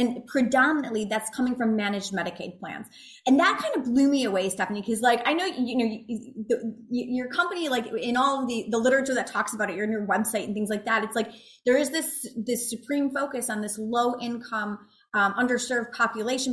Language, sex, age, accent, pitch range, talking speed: English, female, 20-39, American, 215-270 Hz, 220 wpm